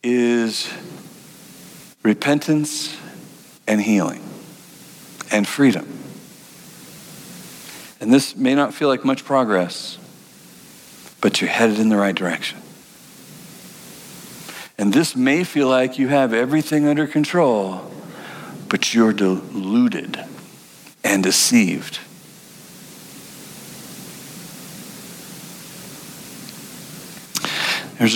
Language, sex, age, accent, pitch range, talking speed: English, male, 60-79, American, 125-180 Hz, 80 wpm